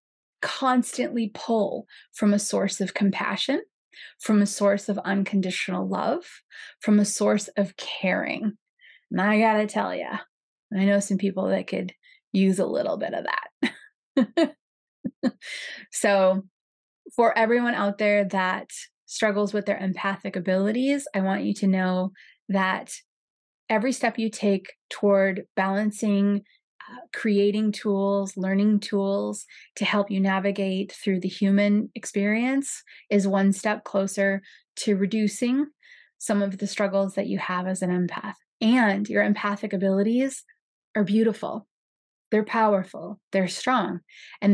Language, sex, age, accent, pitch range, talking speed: English, female, 20-39, American, 195-220 Hz, 130 wpm